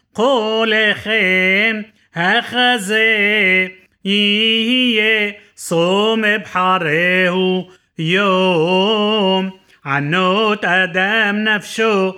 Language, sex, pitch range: Hebrew, male, 190-235 Hz